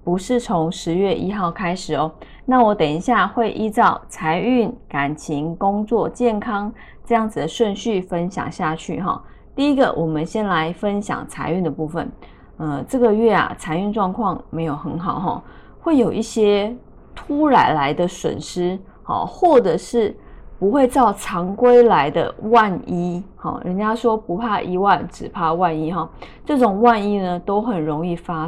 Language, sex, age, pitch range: Chinese, female, 20-39, 175-235 Hz